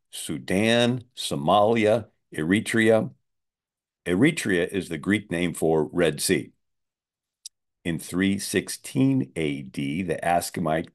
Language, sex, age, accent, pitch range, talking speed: English, male, 50-69, American, 85-105 Hz, 90 wpm